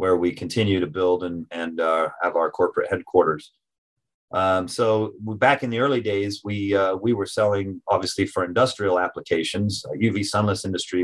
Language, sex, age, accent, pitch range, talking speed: English, male, 30-49, American, 90-105 Hz, 175 wpm